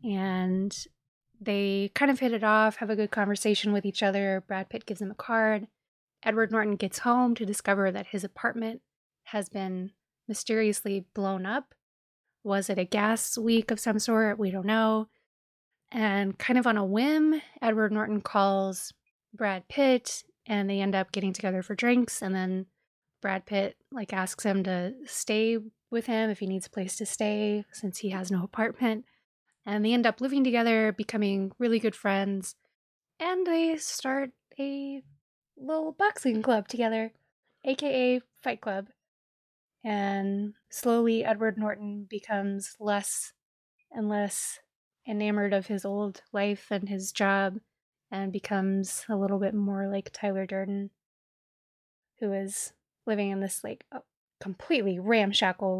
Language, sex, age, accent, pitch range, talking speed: English, female, 20-39, American, 195-225 Hz, 150 wpm